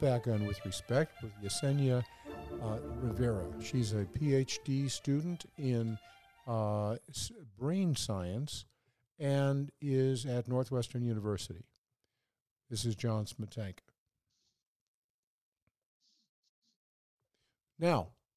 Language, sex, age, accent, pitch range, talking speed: English, male, 50-69, American, 110-135 Hz, 85 wpm